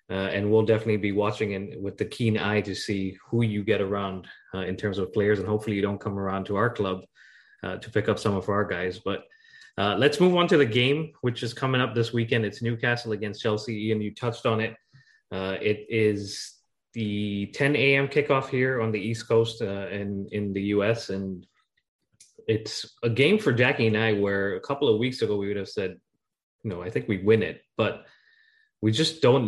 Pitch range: 100-120 Hz